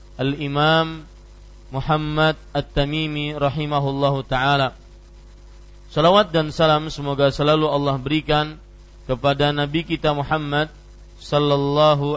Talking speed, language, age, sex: 85 wpm, Malay, 40-59, male